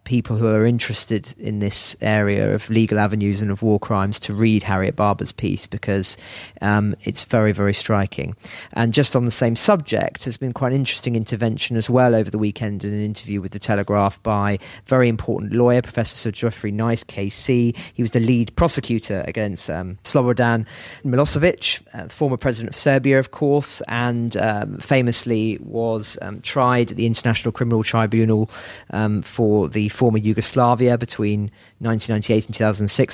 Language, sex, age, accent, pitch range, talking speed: English, male, 40-59, British, 110-130 Hz, 170 wpm